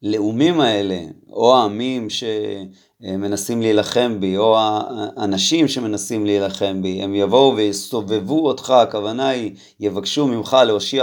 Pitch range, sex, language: 100-135 Hz, male, Hebrew